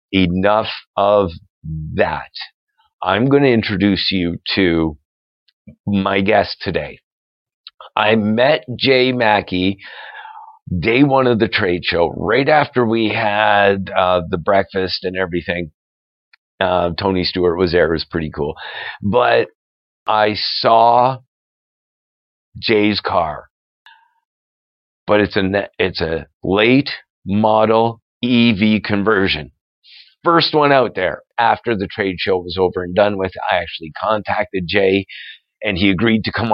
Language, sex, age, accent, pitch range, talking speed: English, male, 50-69, American, 90-110 Hz, 125 wpm